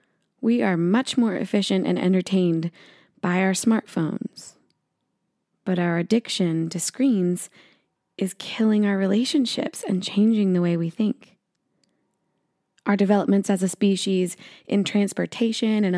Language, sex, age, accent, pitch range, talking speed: English, female, 20-39, American, 180-220 Hz, 125 wpm